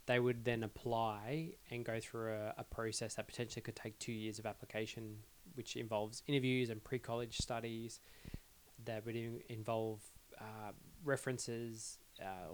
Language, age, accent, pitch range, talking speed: English, 20-39, Australian, 110-125 Hz, 145 wpm